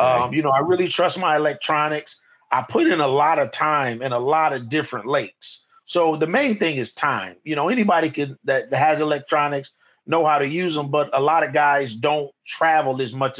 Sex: male